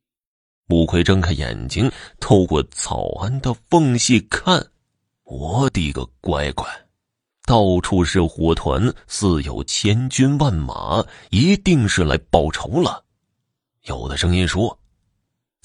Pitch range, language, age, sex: 80-125 Hz, Chinese, 30-49, male